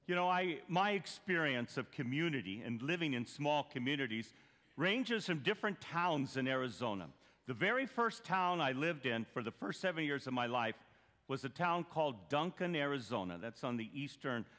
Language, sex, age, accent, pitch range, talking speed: English, male, 50-69, American, 125-170 Hz, 175 wpm